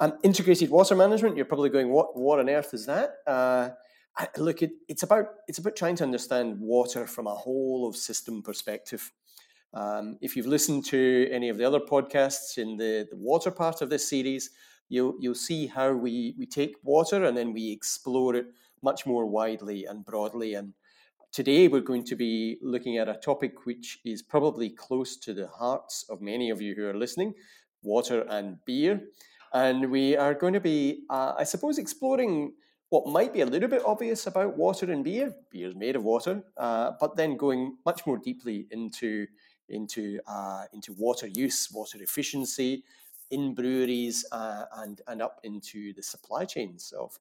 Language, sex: English, male